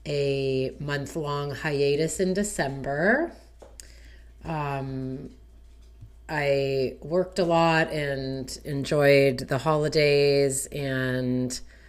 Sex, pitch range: female, 120-160 Hz